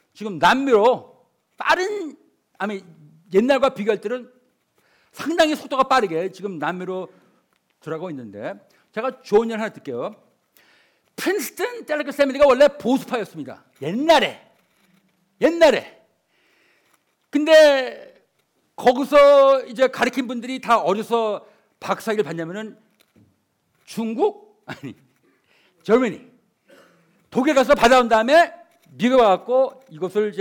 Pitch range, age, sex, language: 195-280 Hz, 50-69, male, Korean